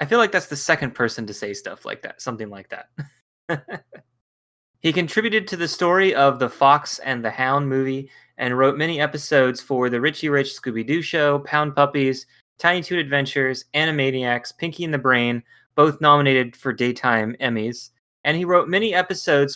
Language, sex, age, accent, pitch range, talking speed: English, male, 20-39, American, 120-155 Hz, 175 wpm